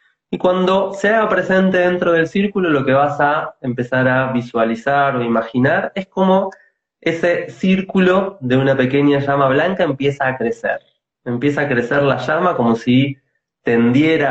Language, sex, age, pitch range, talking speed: Spanish, male, 20-39, 120-155 Hz, 155 wpm